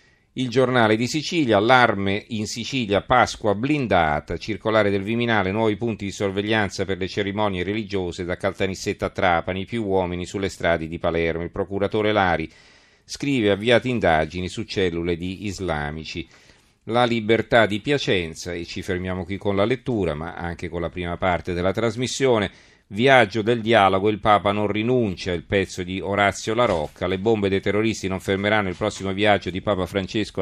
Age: 40-59